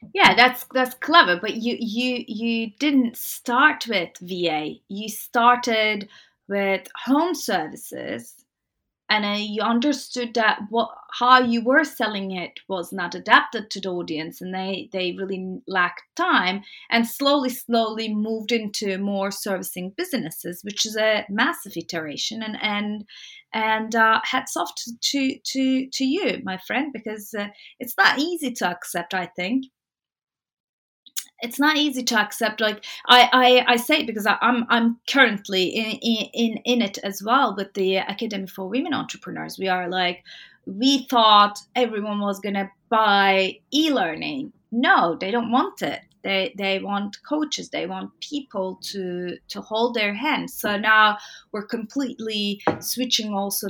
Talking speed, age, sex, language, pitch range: 155 wpm, 30-49, female, English, 195-250 Hz